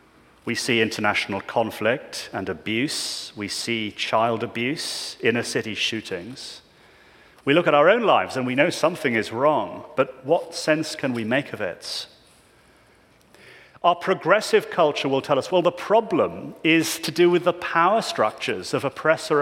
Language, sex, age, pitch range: English, male, 40-59, 145-190 Hz